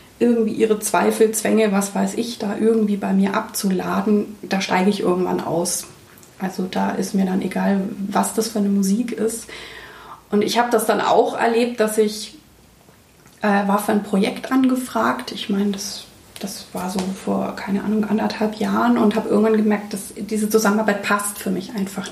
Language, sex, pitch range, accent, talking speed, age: German, female, 195-225 Hz, German, 175 wpm, 30-49